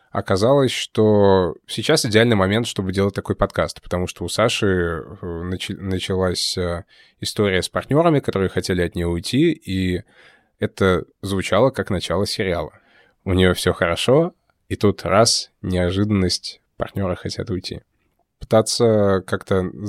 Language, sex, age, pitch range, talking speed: Russian, male, 20-39, 95-110 Hz, 125 wpm